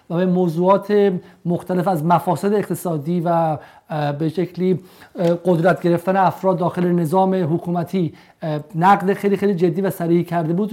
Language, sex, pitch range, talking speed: Persian, male, 175-205 Hz, 135 wpm